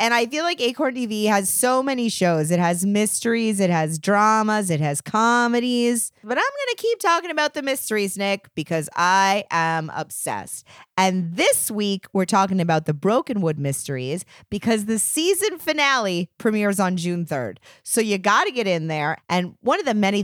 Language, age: English, 30-49